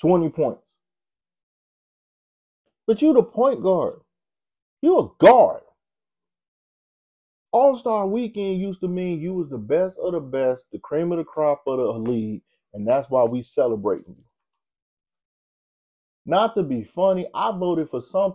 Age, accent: 30-49, American